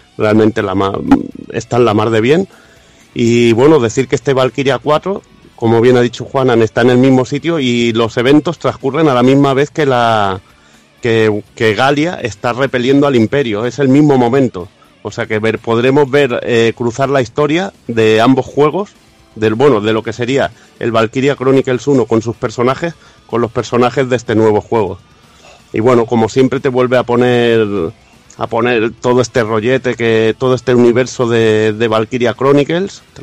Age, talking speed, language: 30-49, 185 wpm, Spanish